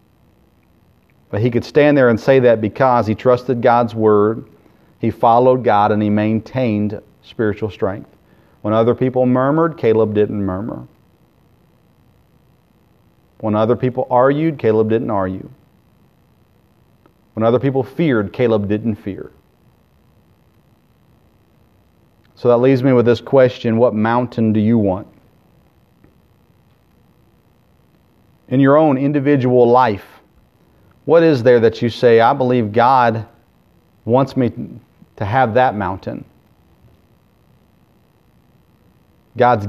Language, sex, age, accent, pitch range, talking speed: English, male, 40-59, American, 105-125 Hz, 115 wpm